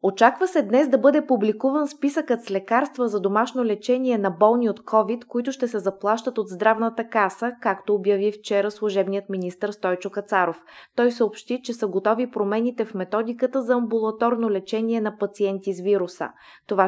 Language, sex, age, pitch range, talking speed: Bulgarian, female, 20-39, 195-240 Hz, 165 wpm